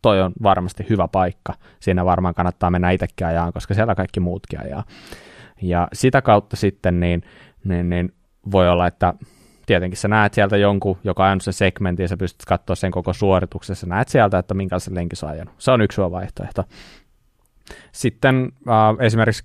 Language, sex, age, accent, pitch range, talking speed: Finnish, male, 20-39, native, 90-110 Hz, 175 wpm